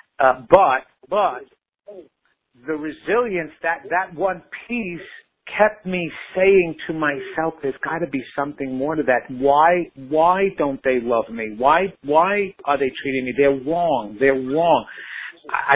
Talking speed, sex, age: 150 wpm, male, 50-69